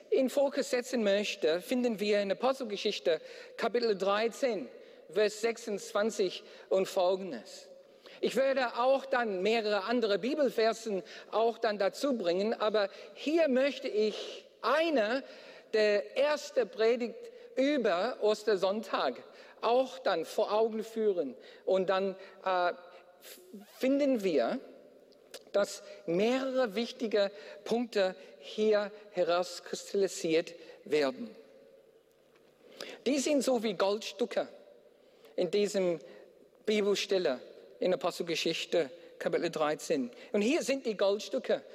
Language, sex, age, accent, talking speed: German, male, 50-69, German, 100 wpm